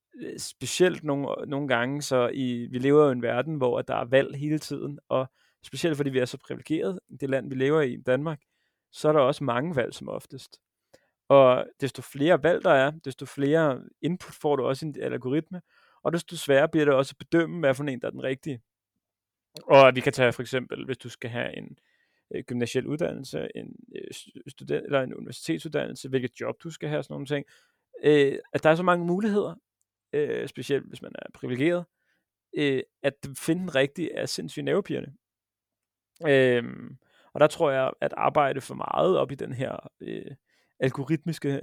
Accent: native